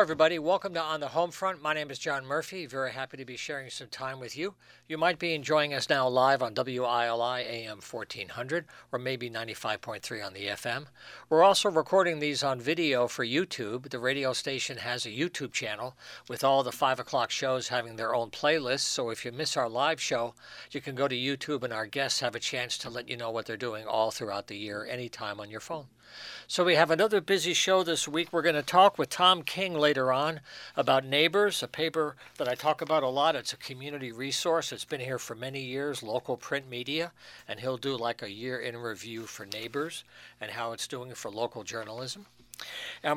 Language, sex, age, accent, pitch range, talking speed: English, male, 60-79, American, 120-155 Hz, 215 wpm